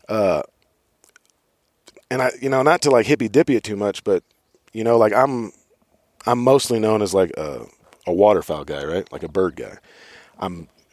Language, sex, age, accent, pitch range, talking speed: English, male, 40-59, American, 95-130 Hz, 180 wpm